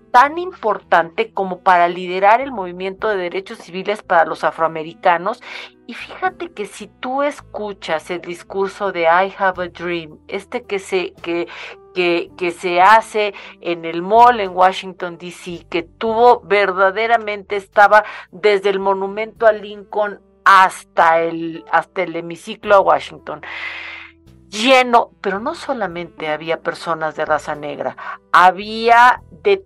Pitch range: 180-220 Hz